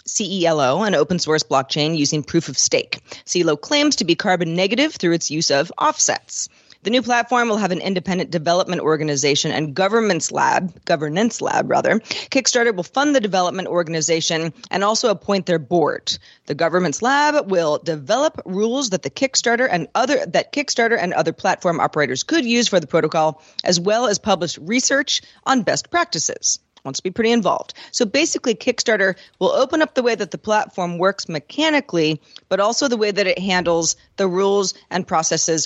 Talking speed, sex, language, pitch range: 175 wpm, female, English, 165-235 Hz